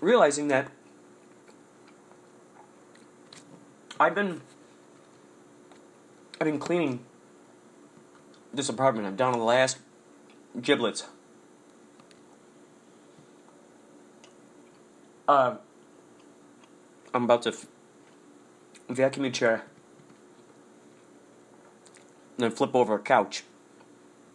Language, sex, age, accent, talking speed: English, male, 30-49, American, 70 wpm